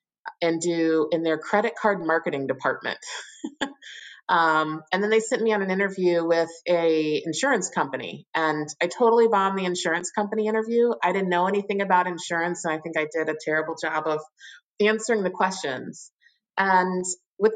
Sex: female